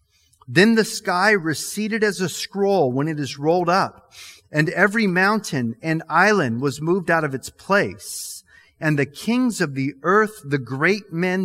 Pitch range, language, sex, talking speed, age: 135-190 Hz, English, male, 170 wpm, 40-59